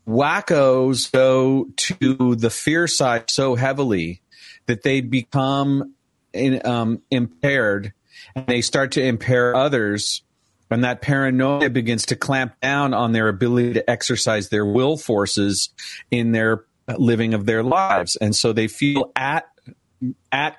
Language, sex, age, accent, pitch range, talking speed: English, male, 40-59, American, 110-130 Hz, 135 wpm